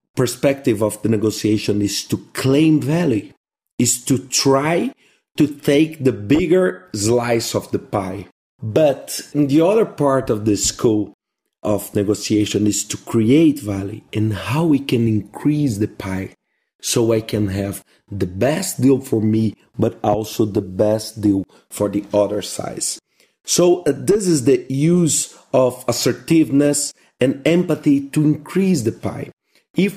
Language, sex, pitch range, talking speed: English, male, 110-145 Hz, 140 wpm